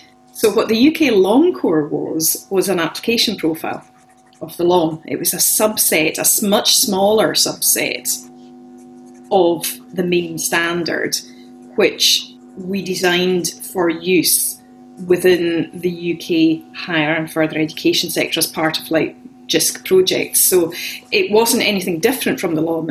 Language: English